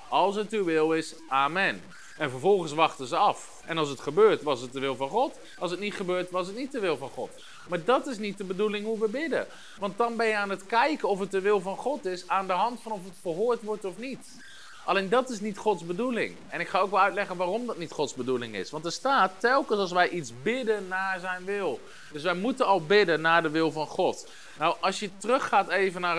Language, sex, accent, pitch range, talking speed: Dutch, male, Dutch, 160-210 Hz, 250 wpm